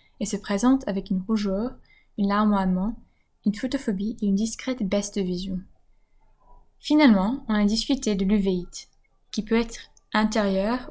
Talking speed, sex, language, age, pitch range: 145 wpm, female, French, 10-29, 195-235 Hz